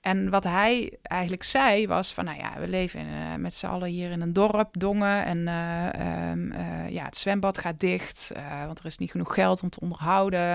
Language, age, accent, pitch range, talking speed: Dutch, 20-39, Dutch, 165-195 Hz, 215 wpm